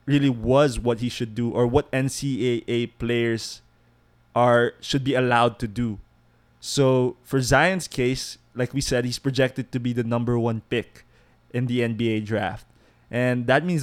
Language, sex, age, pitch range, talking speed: English, male, 20-39, 120-135 Hz, 165 wpm